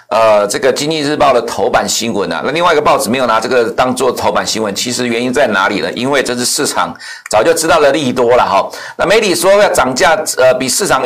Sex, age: male, 60-79